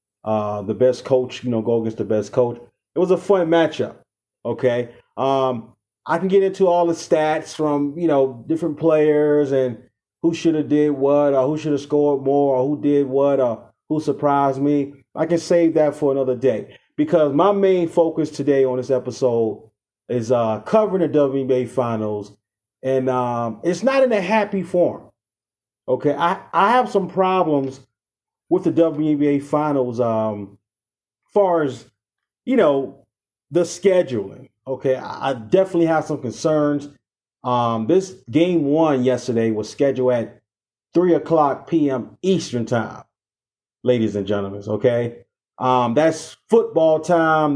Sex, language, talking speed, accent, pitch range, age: male, English, 155 wpm, American, 115-160 Hz, 30-49